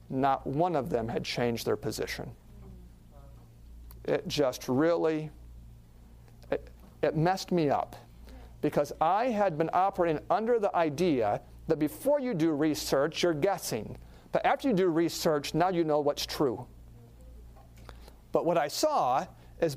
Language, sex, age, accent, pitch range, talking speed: English, male, 50-69, American, 110-175 Hz, 140 wpm